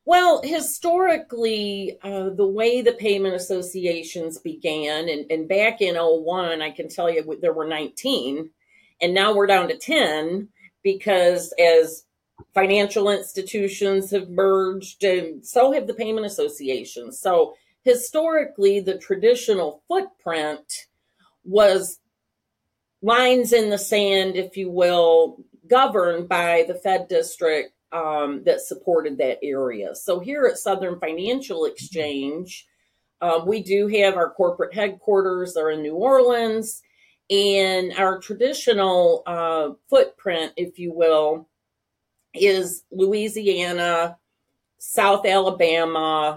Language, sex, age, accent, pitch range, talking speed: English, female, 40-59, American, 165-235 Hz, 120 wpm